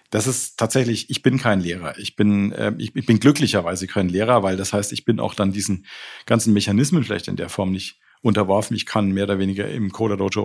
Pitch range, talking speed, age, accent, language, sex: 100-120 Hz, 225 wpm, 40-59, German, German, male